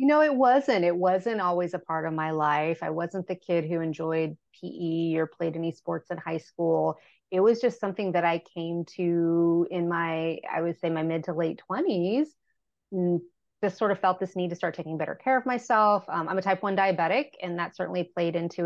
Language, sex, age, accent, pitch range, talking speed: English, female, 30-49, American, 170-200 Hz, 220 wpm